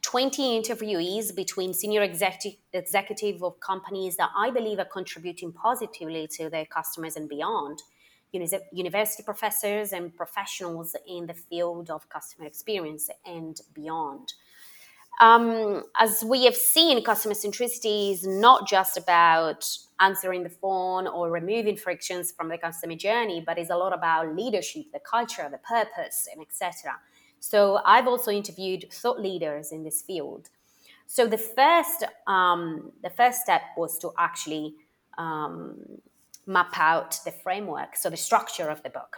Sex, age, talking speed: female, 20-39, 145 wpm